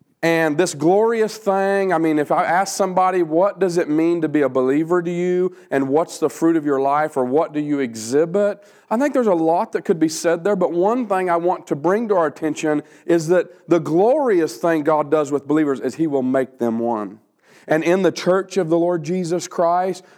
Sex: male